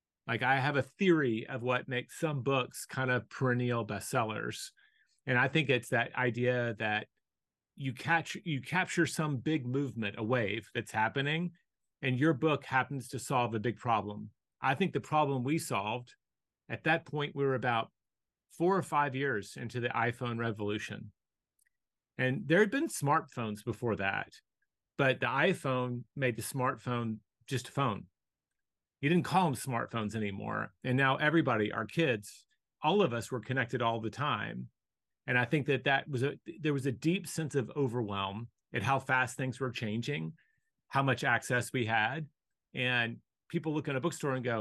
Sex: male